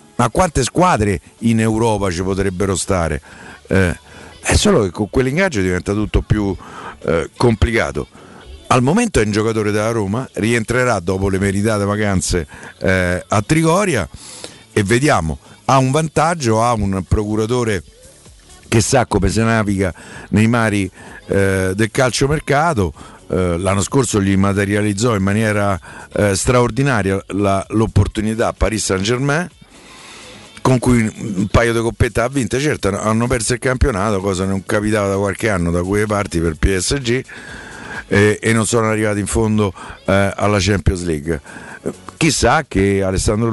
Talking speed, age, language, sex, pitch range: 145 wpm, 50-69, Italian, male, 95-120 Hz